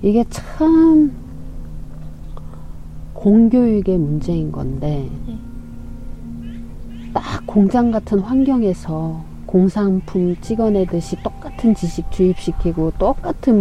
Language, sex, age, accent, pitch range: Korean, female, 40-59, native, 155-235 Hz